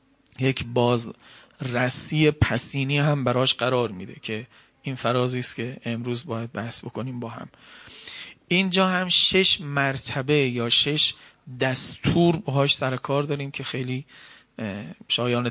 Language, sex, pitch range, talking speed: Persian, male, 125-150 Hz, 130 wpm